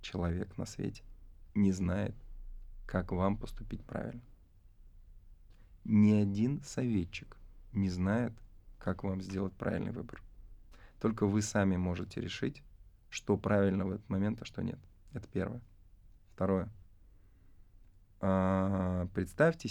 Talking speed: 115 wpm